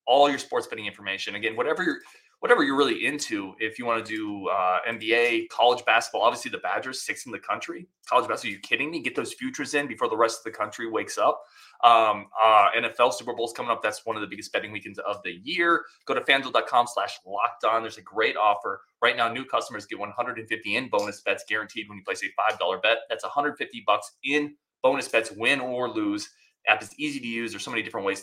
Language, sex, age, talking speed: English, male, 20-39, 230 wpm